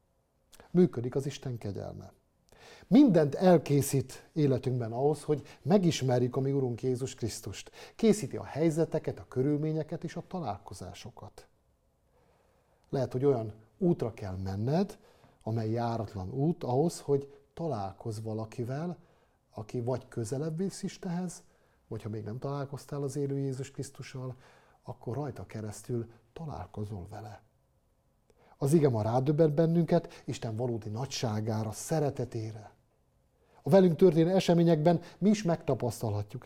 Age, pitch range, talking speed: 50-69, 110-150 Hz, 115 wpm